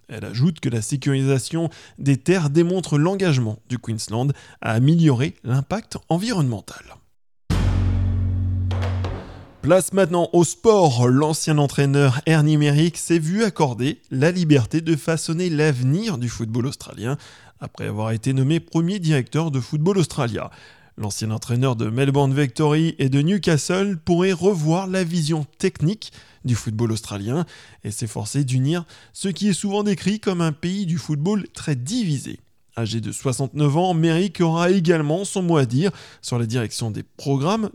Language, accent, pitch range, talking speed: English, French, 125-170 Hz, 145 wpm